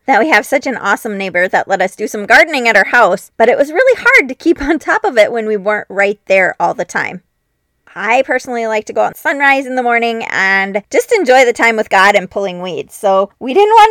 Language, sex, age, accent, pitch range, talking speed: English, female, 20-39, American, 195-285 Hz, 255 wpm